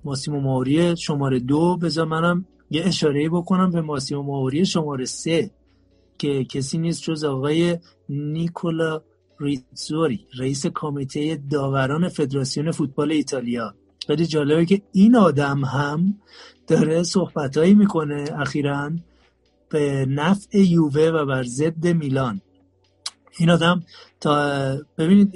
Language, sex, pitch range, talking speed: Persian, male, 135-165 Hz, 110 wpm